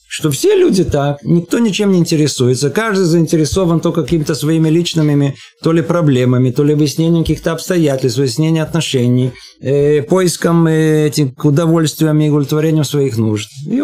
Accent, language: native, Russian